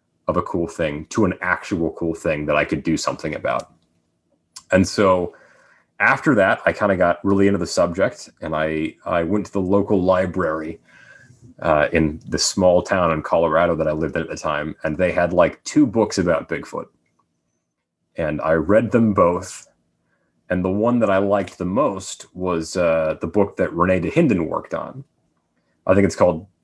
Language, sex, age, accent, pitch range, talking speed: English, male, 30-49, American, 80-100 Hz, 185 wpm